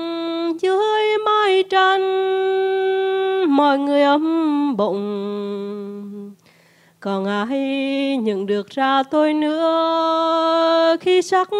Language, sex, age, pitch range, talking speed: English, female, 20-39, 215-325 Hz, 85 wpm